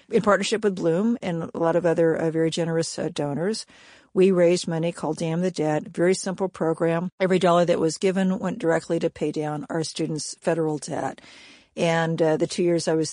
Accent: American